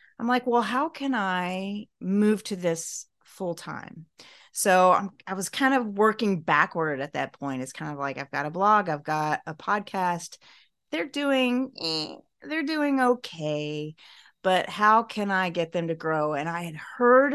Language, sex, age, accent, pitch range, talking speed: English, female, 30-49, American, 155-195 Hz, 175 wpm